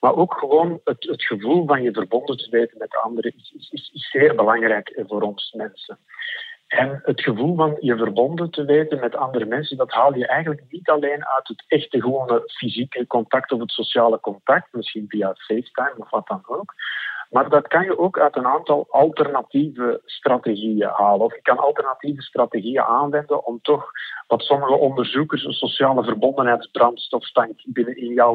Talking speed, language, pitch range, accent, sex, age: 175 wpm, Dutch, 120-155 Hz, Dutch, male, 50-69